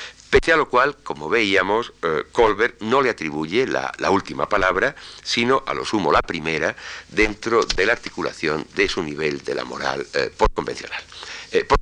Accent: Spanish